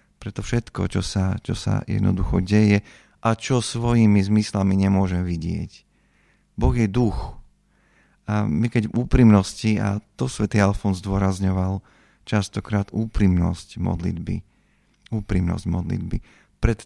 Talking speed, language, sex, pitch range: 115 wpm, Slovak, male, 95-110 Hz